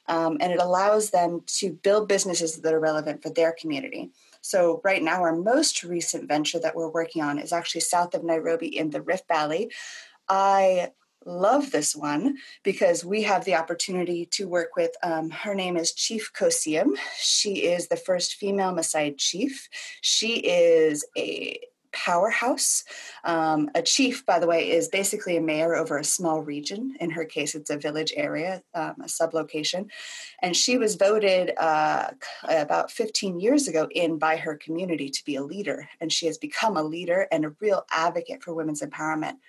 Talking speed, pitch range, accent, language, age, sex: 180 wpm, 160-205 Hz, American, English, 30-49, female